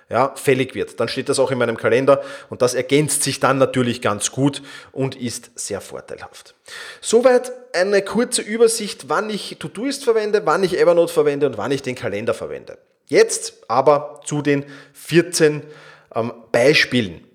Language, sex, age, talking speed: German, male, 30-49, 165 wpm